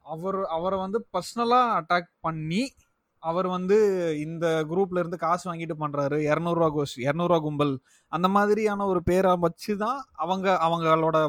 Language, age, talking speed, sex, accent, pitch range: Tamil, 30-49, 130 wpm, male, native, 155-210 Hz